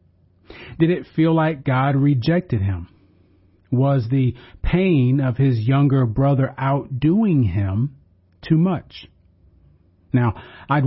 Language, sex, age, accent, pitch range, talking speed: English, male, 40-59, American, 95-145 Hz, 110 wpm